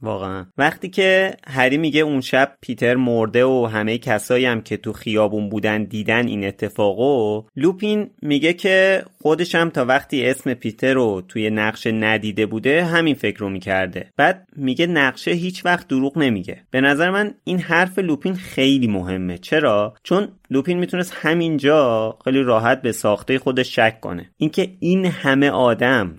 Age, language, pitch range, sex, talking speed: 30-49, Persian, 110-165 Hz, male, 155 wpm